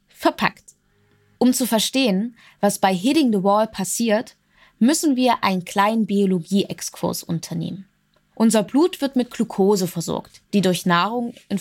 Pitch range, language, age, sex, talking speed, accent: 190-245 Hz, German, 20-39, female, 135 wpm, German